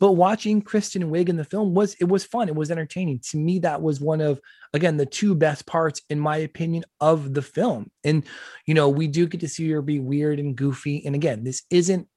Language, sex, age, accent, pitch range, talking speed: English, male, 20-39, American, 140-170 Hz, 235 wpm